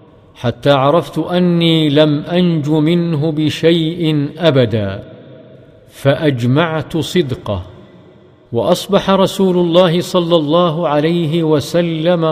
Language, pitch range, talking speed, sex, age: English, 145-170 Hz, 85 wpm, male, 50-69